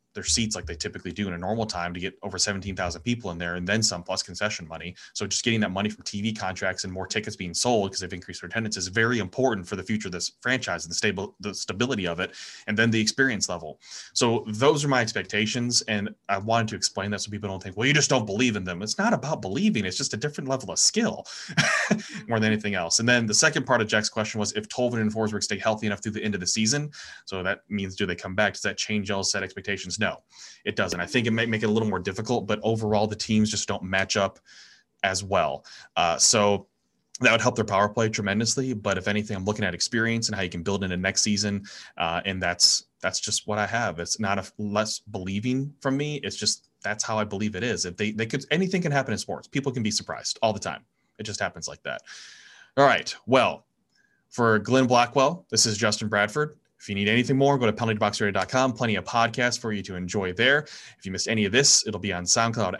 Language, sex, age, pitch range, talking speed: English, male, 20-39, 100-115 Hz, 250 wpm